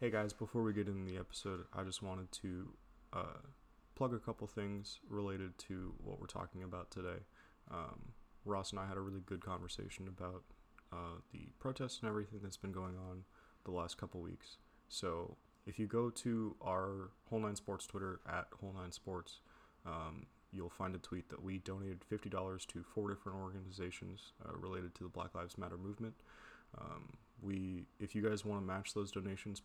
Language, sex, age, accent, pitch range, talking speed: English, male, 20-39, American, 90-105 Hz, 170 wpm